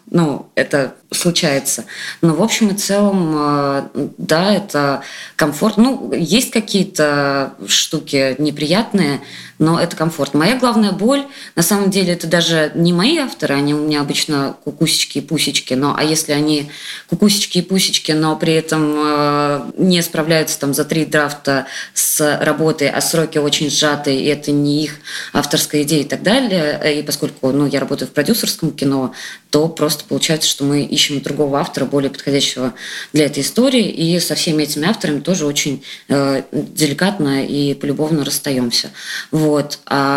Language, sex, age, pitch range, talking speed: Russian, female, 20-39, 145-180 Hz, 150 wpm